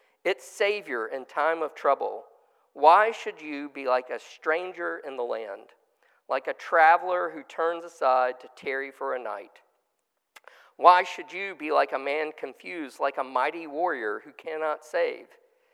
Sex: male